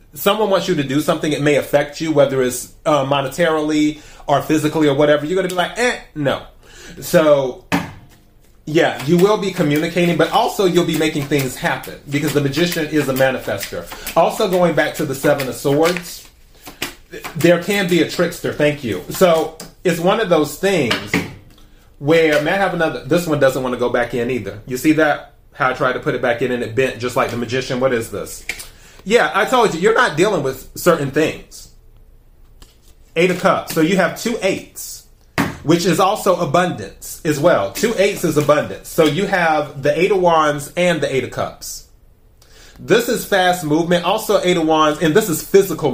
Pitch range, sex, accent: 140-175 Hz, male, American